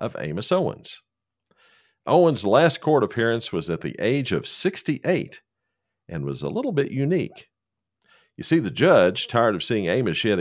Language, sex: English, male